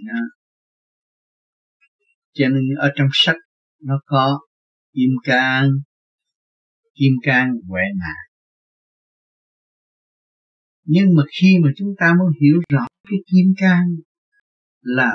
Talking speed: 105 wpm